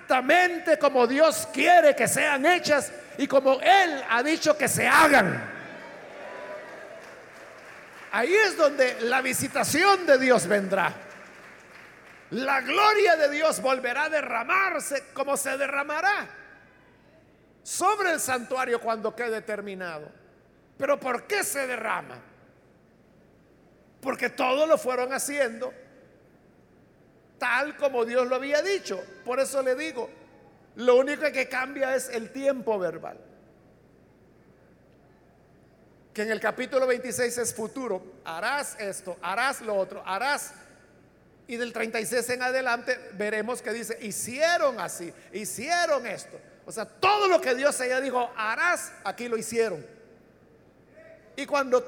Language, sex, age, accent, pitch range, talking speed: Spanish, male, 50-69, Mexican, 230-295 Hz, 125 wpm